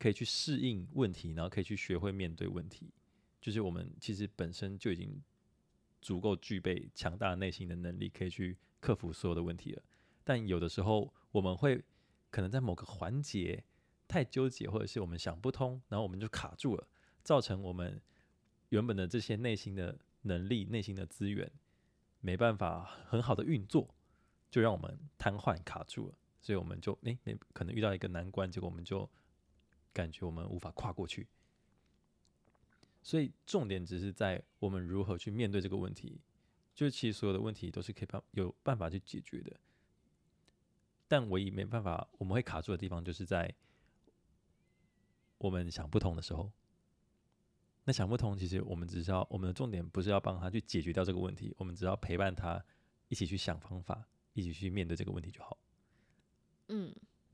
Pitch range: 90-110 Hz